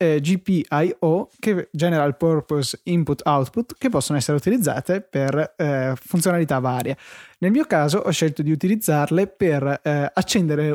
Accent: native